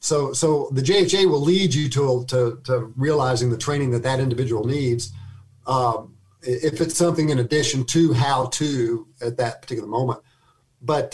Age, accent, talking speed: 50-69, American, 165 wpm